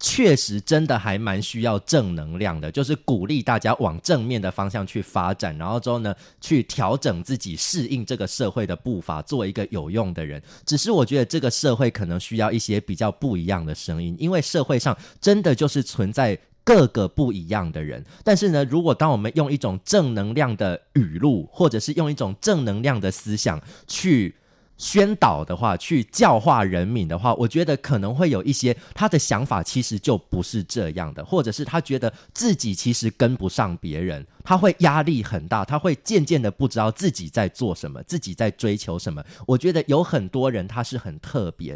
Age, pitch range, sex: 20-39, 100-145 Hz, male